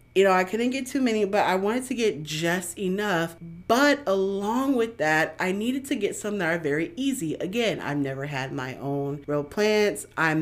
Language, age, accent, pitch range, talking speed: English, 30-49, American, 145-180 Hz, 205 wpm